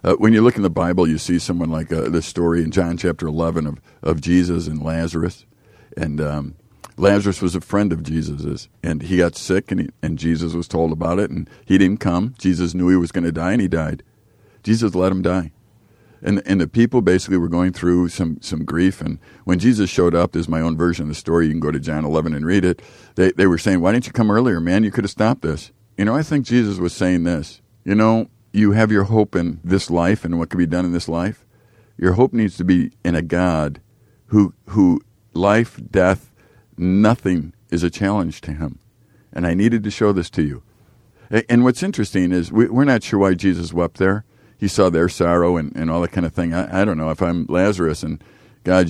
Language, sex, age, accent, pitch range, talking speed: English, male, 50-69, American, 85-105 Hz, 230 wpm